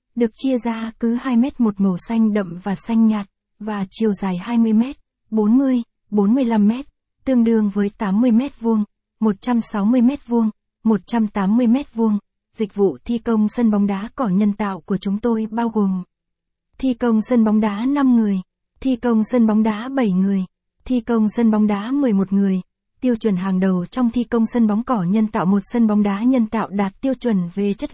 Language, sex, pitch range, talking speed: Vietnamese, female, 200-240 Hz, 190 wpm